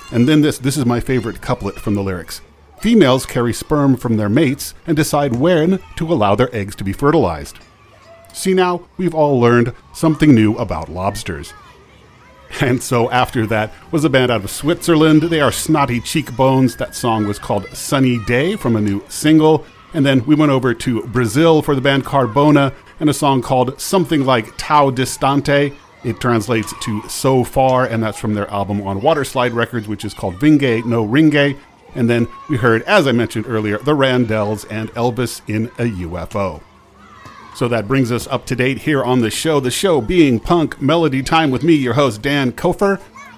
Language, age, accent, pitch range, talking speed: English, 40-59, American, 110-145 Hz, 190 wpm